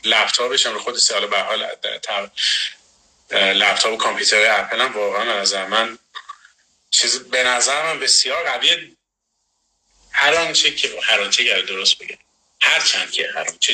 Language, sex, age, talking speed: Persian, male, 30-49, 150 wpm